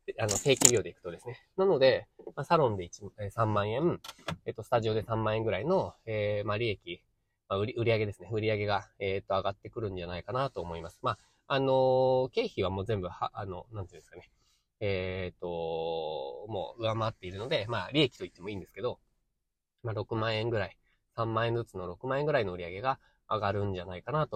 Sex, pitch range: male, 100-130 Hz